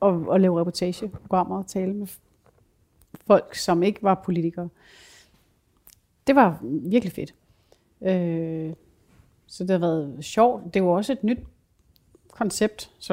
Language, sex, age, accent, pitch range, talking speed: Danish, female, 30-49, native, 165-190 Hz, 135 wpm